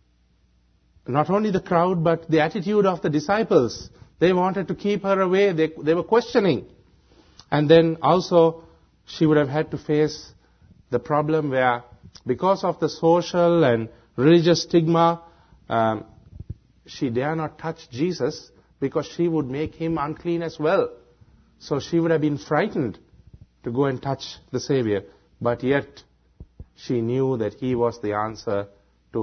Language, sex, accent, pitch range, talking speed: English, male, Indian, 115-165 Hz, 155 wpm